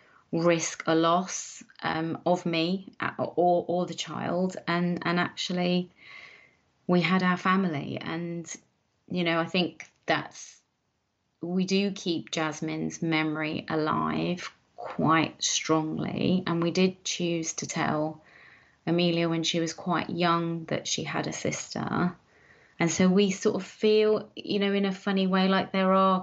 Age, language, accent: 30-49, English, British